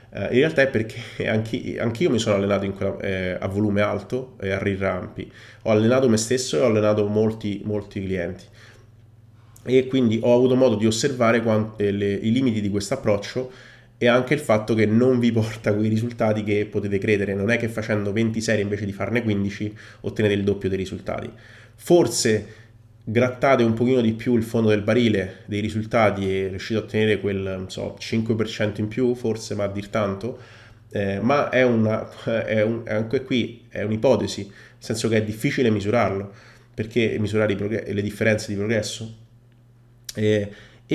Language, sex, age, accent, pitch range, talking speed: Italian, male, 20-39, native, 105-120 Hz, 175 wpm